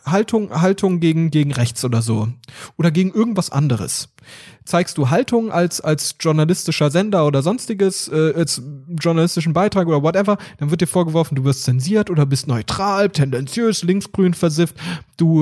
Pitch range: 145-190 Hz